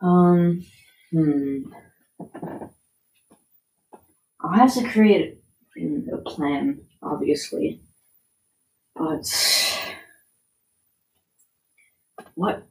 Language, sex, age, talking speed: English, female, 30-49, 55 wpm